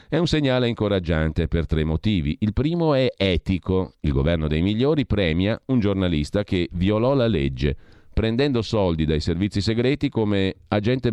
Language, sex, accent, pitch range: Italian, male, native, 80-110 Hz